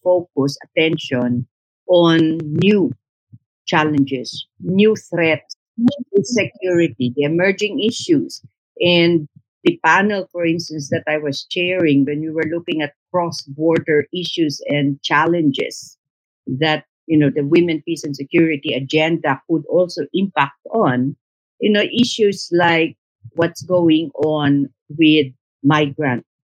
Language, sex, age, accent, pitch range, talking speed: English, female, 50-69, Filipino, 140-175 Hz, 115 wpm